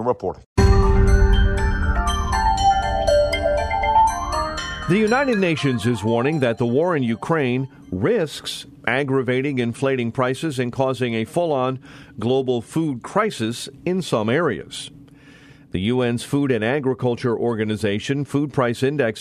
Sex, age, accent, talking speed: male, 50-69, American, 105 wpm